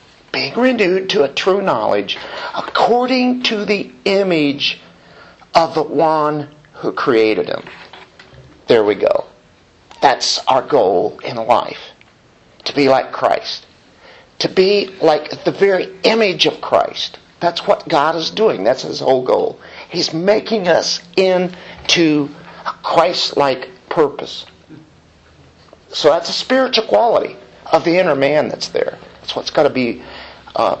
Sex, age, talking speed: male, 50-69, 130 wpm